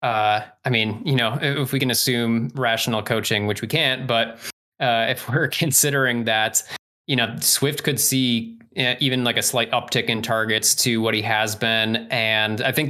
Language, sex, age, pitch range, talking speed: English, male, 20-39, 110-130 Hz, 185 wpm